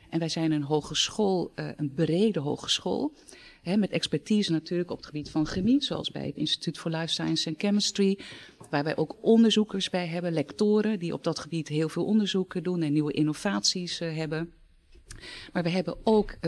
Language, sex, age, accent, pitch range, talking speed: Dutch, female, 40-59, Dutch, 160-190 Hz, 175 wpm